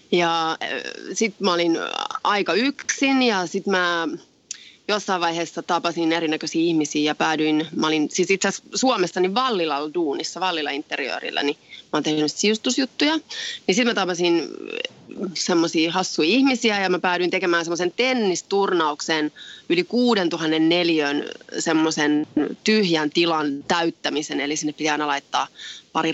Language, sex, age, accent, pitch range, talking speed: Finnish, female, 30-49, native, 160-220 Hz, 125 wpm